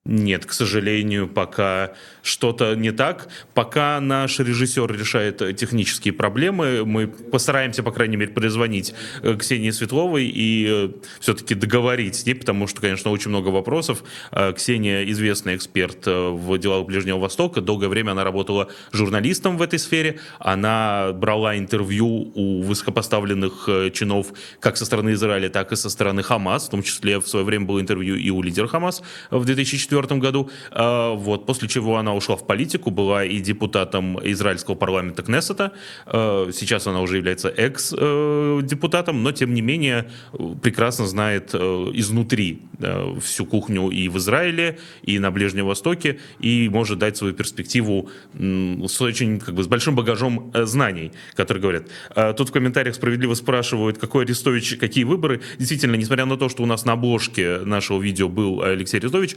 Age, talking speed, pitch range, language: 20-39, 150 wpm, 100-125 Hz, Russian